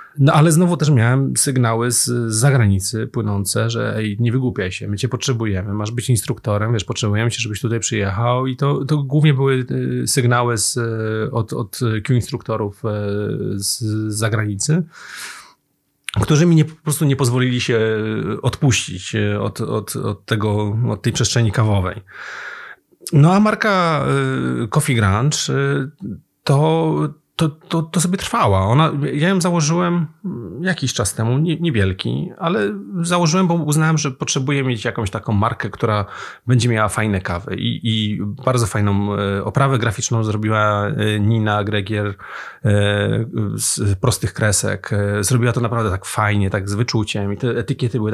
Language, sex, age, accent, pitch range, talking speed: Polish, male, 30-49, native, 105-145 Hz, 140 wpm